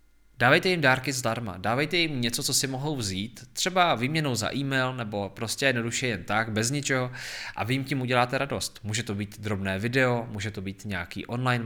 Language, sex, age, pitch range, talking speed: Czech, male, 20-39, 100-130 Hz, 195 wpm